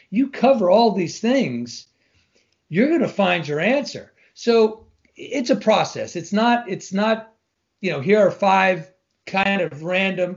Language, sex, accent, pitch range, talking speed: English, male, American, 150-200 Hz, 155 wpm